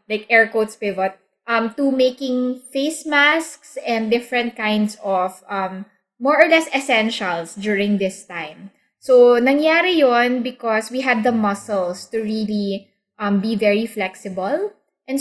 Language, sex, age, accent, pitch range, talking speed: English, female, 20-39, Filipino, 195-255 Hz, 140 wpm